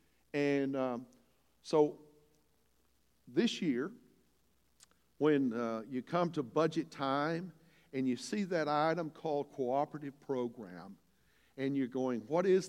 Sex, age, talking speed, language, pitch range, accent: male, 60-79, 120 wpm, English, 120-160 Hz, American